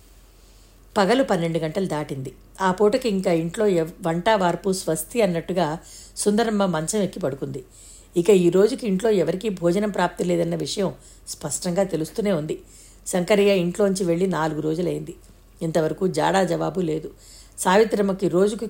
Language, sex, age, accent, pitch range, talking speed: Telugu, female, 60-79, native, 165-205 Hz, 125 wpm